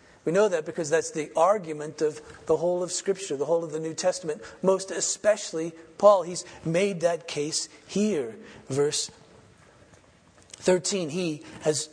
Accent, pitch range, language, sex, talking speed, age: American, 145-180 Hz, English, male, 150 wpm, 40-59